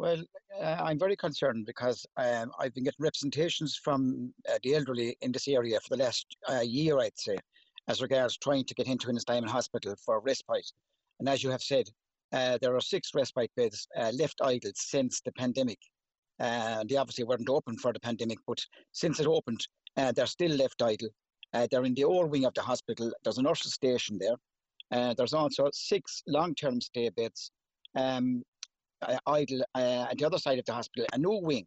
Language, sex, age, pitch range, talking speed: English, male, 60-79, 125-150 Hz, 195 wpm